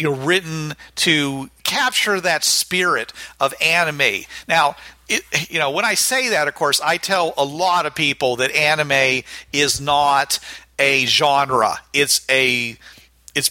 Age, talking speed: 50-69, 145 wpm